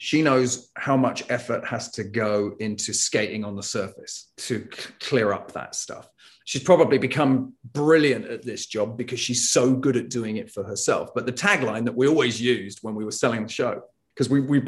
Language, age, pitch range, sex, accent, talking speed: English, 30-49, 120-145 Hz, male, British, 200 wpm